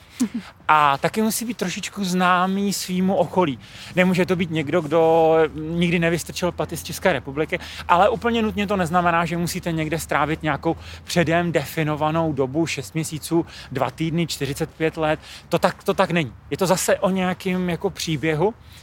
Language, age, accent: Czech, 30-49, native